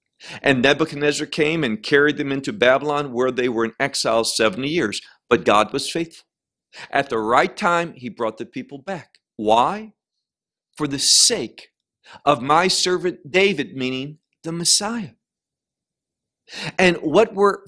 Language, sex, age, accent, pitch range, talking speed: English, male, 50-69, American, 140-190 Hz, 145 wpm